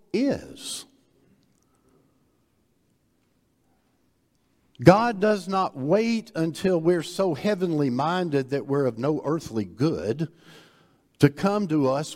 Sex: male